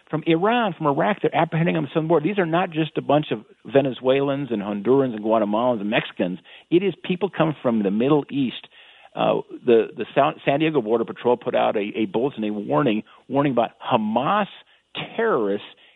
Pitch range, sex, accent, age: 105-145 Hz, male, American, 50-69